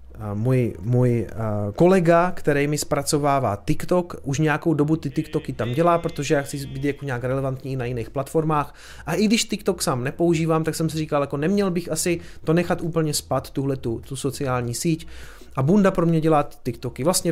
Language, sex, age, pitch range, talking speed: Czech, male, 30-49, 135-170 Hz, 185 wpm